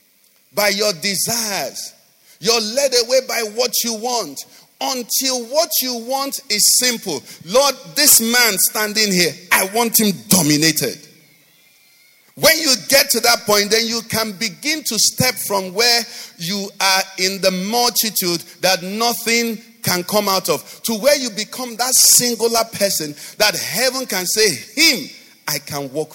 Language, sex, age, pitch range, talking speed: English, male, 50-69, 175-250 Hz, 150 wpm